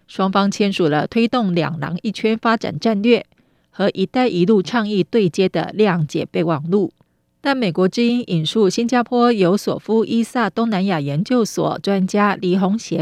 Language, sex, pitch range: Chinese, female, 175-225 Hz